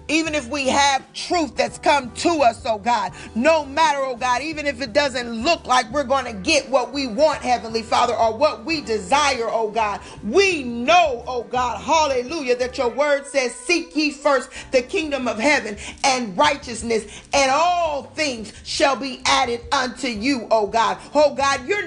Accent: American